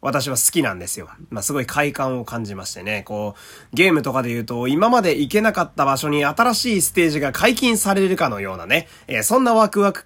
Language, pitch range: Japanese, 130-200 Hz